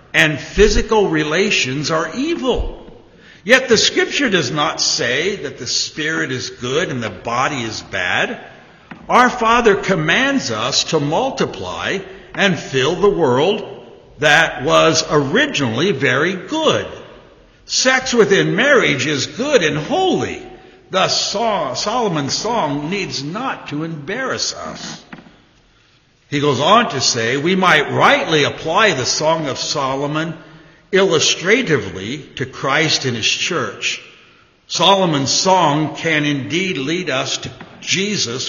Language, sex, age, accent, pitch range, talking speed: English, male, 60-79, American, 140-200 Hz, 120 wpm